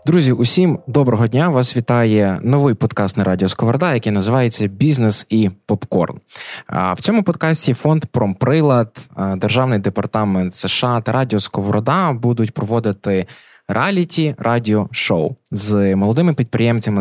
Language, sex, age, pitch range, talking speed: Ukrainian, male, 20-39, 100-130 Hz, 115 wpm